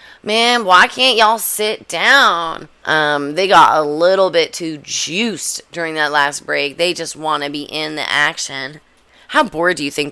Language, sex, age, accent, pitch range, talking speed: English, female, 20-39, American, 150-180 Hz, 185 wpm